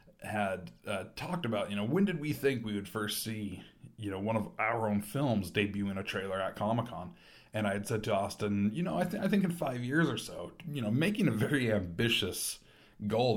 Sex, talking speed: male, 230 wpm